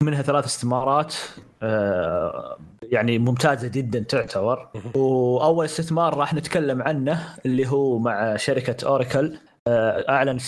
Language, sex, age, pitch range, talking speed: Arabic, male, 20-39, 120-150 Hz, 105 wpm